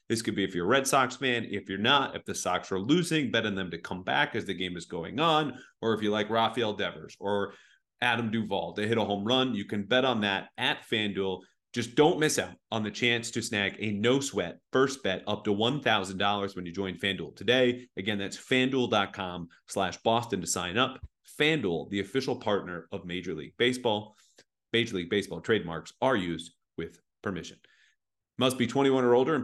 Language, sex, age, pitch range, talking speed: English, male, 30-49, 100-125 Hz, 205 wpm